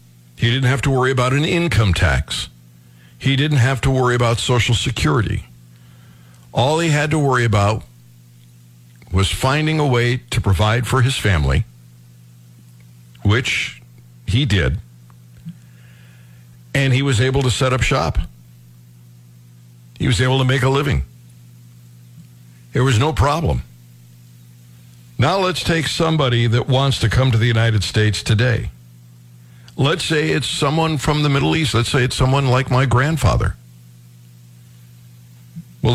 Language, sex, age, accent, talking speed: English, male, 60-79, American, 140 wpm